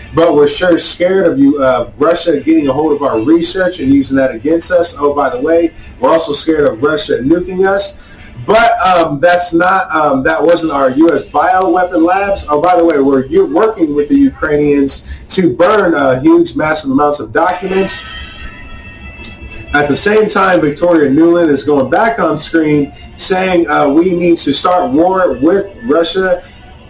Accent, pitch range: American, 145-185 Hz